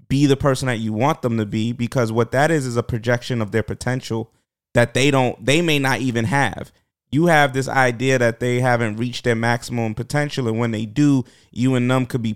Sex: male